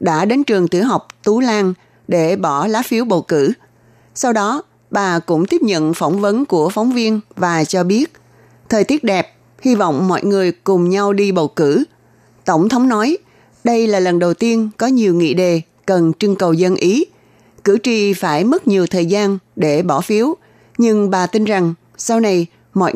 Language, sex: Vietnamese, female